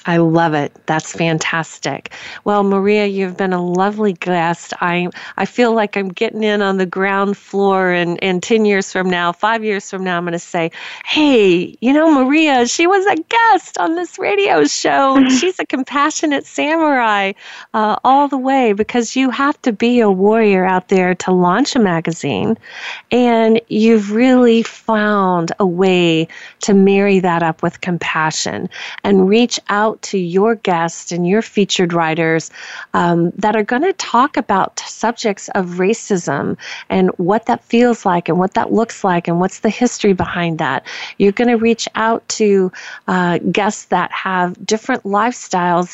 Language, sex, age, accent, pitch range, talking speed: English, female, 40-59, American, 180-230 Hz, 170 wpm